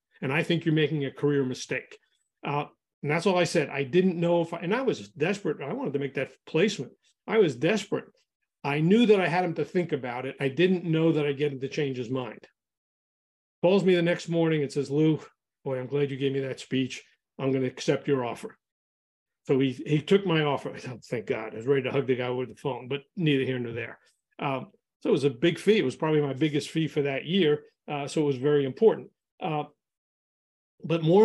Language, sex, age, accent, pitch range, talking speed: English, male, 40-59, American, 140-170 Hz, 240 wpm